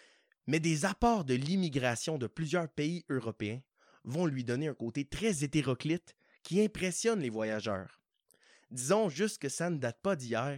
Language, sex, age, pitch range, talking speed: French, male, 30-49, 125-185 Hz, 160 wpm